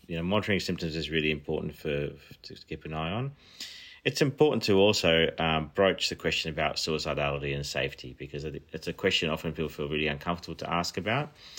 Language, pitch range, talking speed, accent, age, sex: English, 75-90 Hz, 190 wpm, Australian, 30-49, male